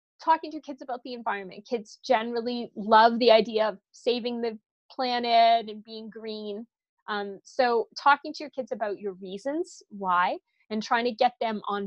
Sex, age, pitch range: female, 20-39, 210-260 Hz